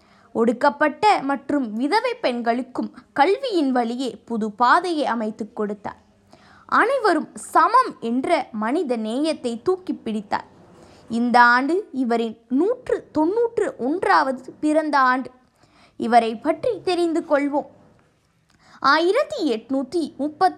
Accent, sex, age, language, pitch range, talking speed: Indian, female, 20-39, English, 235-330 Hz, 85 wpm